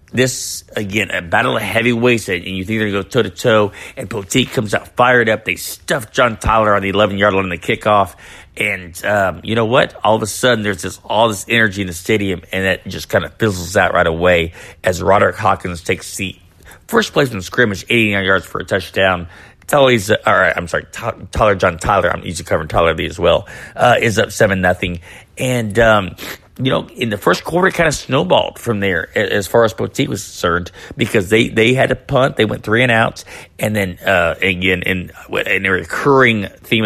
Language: English